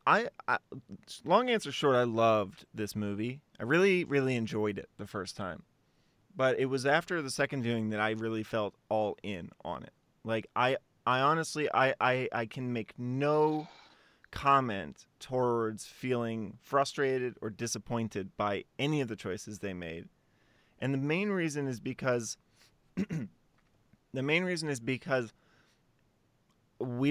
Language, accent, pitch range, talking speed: English, American, 110-145 Hz, 150 wpm